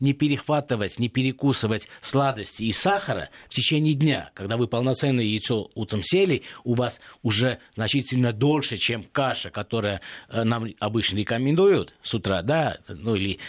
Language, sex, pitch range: Russian, male, 115-150 Hz